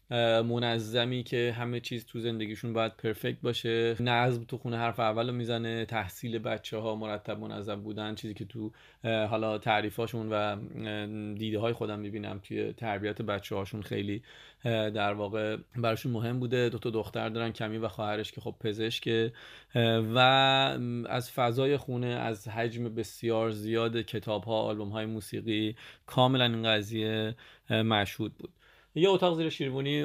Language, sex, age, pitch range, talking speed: Persian, male, 30-49, 110-125 Hz, 145 wpm